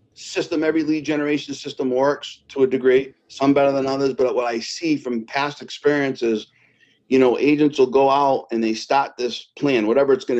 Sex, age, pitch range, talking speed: male, 40-59, 130-195 Hz, 195 wpm